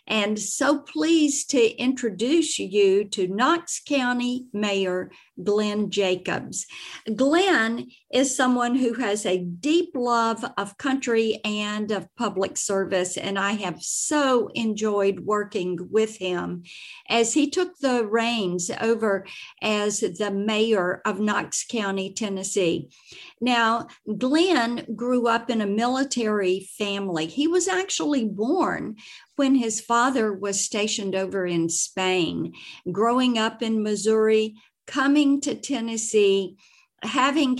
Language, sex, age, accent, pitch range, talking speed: English, female, 50-69, American, 205-260 Hz, 120 wpm